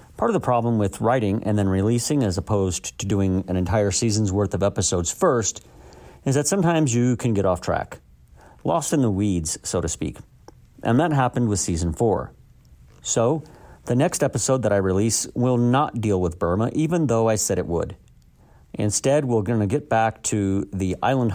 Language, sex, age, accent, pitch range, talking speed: English, male, 50-69, American, 95-125 Hz, 190 wpm